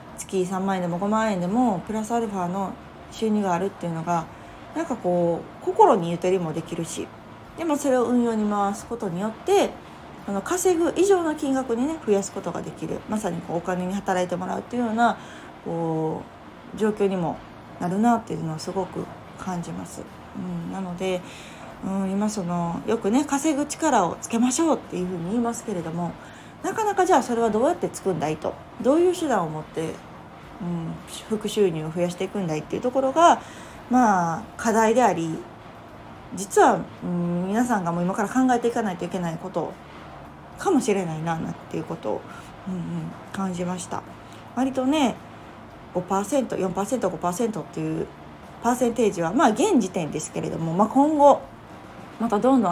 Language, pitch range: Japanese, 175-240 Hz